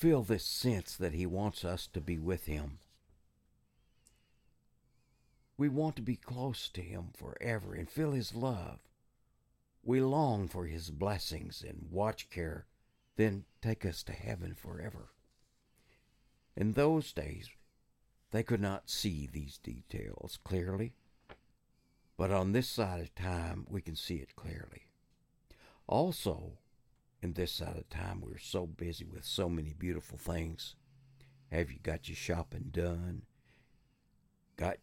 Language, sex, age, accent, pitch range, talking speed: English, male, 60-79, American, 85-110 Hz, 135 wpm